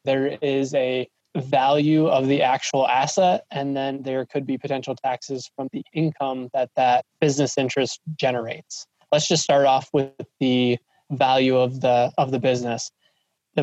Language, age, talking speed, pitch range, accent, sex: English, 20-39, 160 wpm, 130-150 Hz, American, male